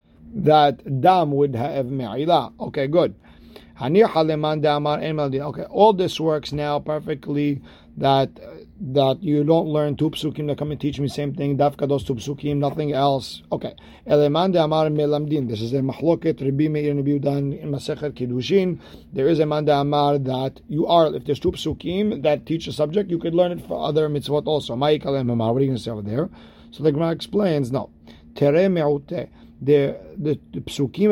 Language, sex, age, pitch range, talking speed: English, male, 40-59, 135-155 Hz, 170 wpm